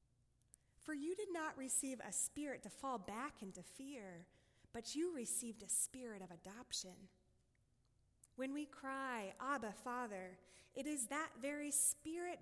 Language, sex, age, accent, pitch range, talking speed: English, female, 20-39, American, 175-255 Hz, 140 wpm